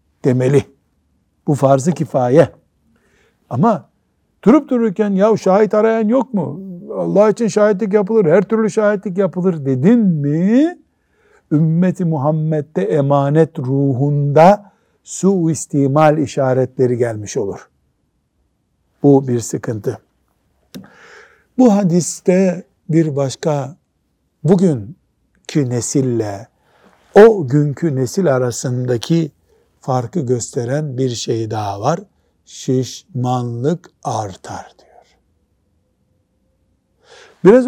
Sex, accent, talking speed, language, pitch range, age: male, native, 85 wpm, Turkish, 125-190 Hz, 60-79